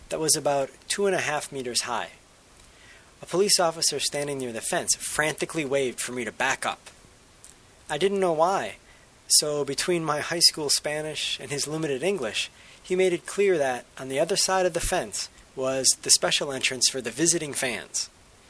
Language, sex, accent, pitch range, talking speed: English, male, American, 130-170 Hz, 185 wpm